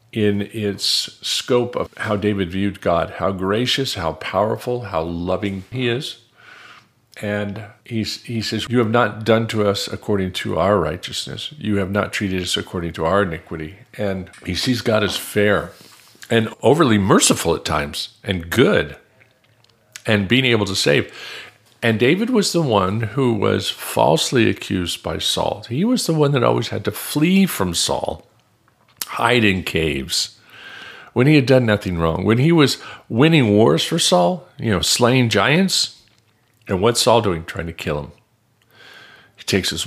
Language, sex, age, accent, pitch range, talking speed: English, male, 50-69, American, 95-120 Hz, 165 wpm